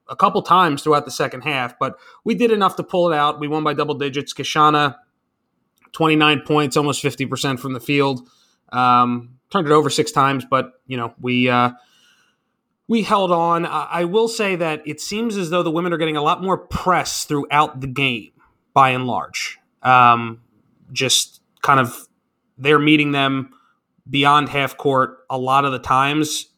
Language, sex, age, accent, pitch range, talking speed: English, male, 30-49, American, 125-150 Hz, 180 wpm